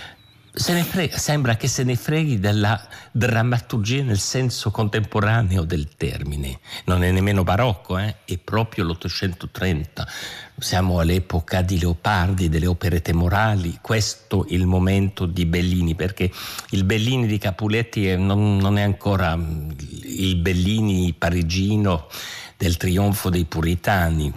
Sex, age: male, 50-69